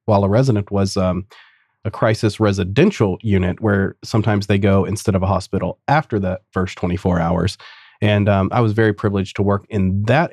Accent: American